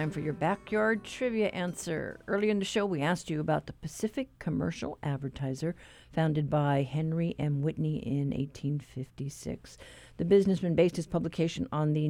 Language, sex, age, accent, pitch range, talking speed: English, female, 50-69, American, 145-185 Hz, 155 wpm